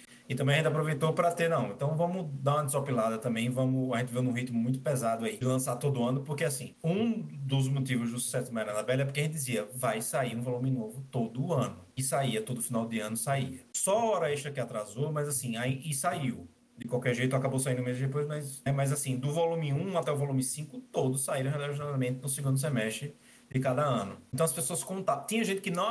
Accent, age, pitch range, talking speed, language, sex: Brazilian, 20-39, 125-165 Hz, 240 wpm, Portuguese, male